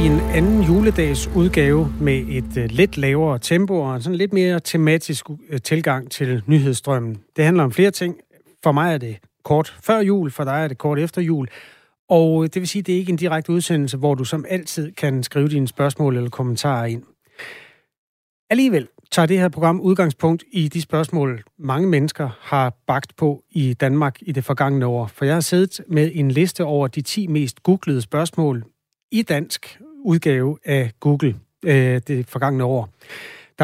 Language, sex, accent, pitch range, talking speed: Danish, male, native, 135-170 Hz, 180 wpm